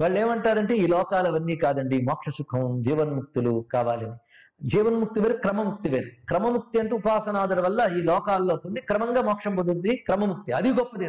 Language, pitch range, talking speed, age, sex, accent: Telugu, 175-235 Hz, 135 wpm, 50-69, male, native